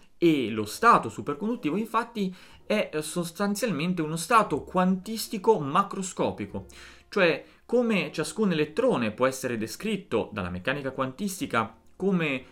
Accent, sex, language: native, male, Italian